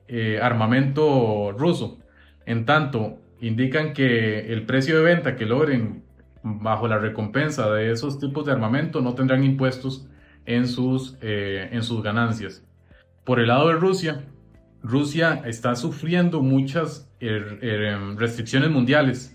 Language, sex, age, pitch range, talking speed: Spanish, male, 30-49, 115-145 Hz, 125 wpm